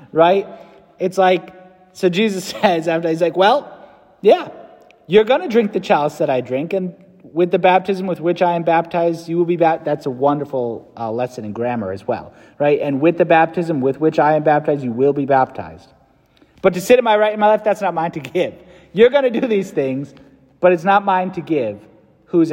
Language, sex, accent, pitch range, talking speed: English, male, American, 130-180 Hz, 220 wpm